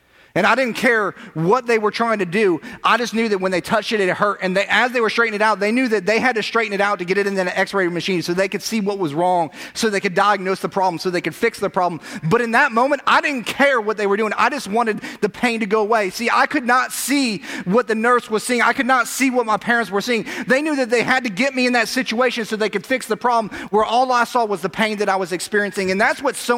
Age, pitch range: 30-49, 205-250 Hz